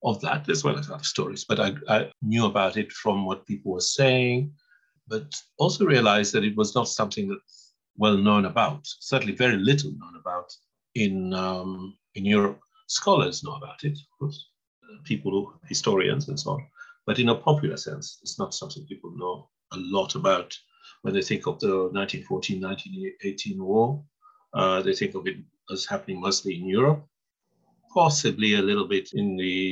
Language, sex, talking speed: English, male, 175 wpm